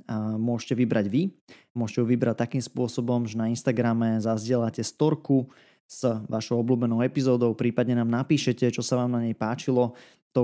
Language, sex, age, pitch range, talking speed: Slovak, male, 20-39, 115-130 Hz, 155 wpm